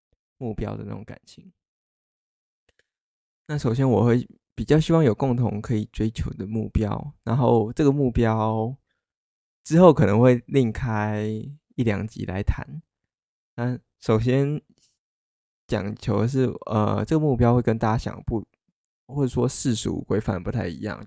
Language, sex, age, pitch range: Chinese, male, 20-39, 105-125 Hz